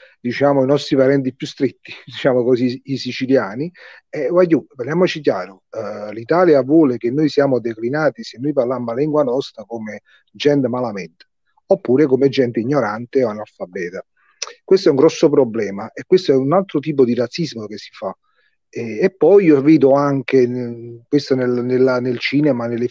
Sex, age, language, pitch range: male, 40-59, Italian, 125-165 Hz